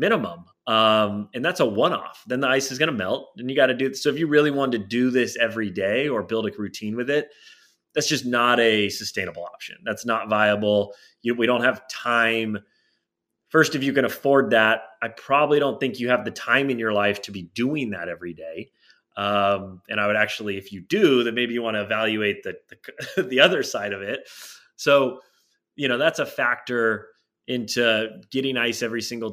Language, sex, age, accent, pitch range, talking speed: English, male, 30-49, American, 105-130 Hz, 215 wpm